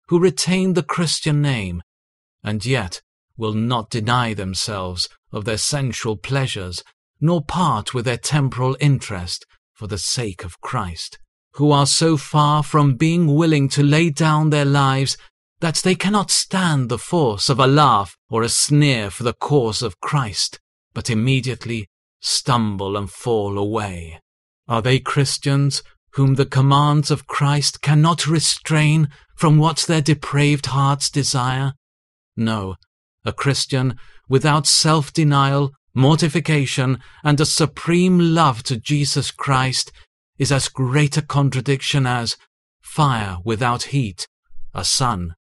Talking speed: 135 wpm